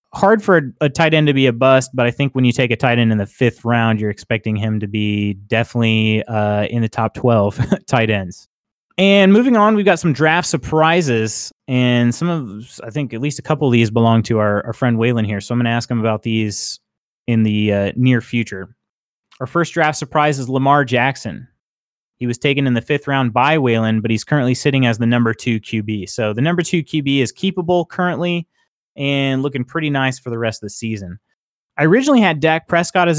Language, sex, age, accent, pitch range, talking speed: English, male, 30-49, American, 110-150 Hz, 220 wpm